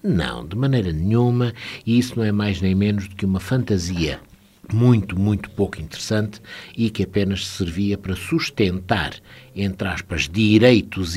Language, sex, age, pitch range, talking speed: Portuguese, male, 60-79, 90-120 Hz, 145 wpm